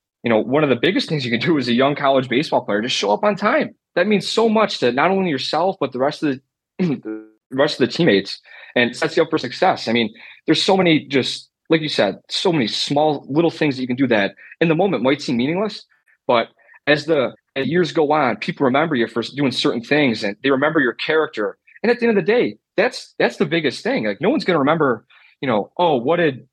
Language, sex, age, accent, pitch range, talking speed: English, male, 30-49, American, 120-155 Hz, 250 wpm